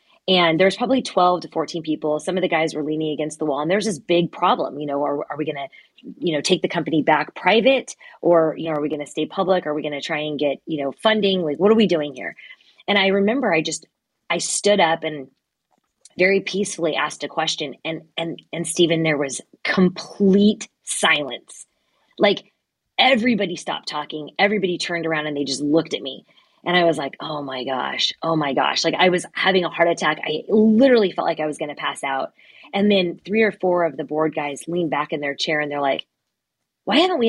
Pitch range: 155-195 Hz